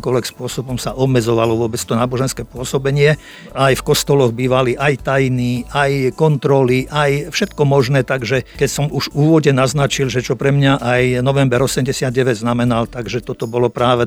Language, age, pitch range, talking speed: Slovak, 50-69, 125-140 Hz, 160 wpm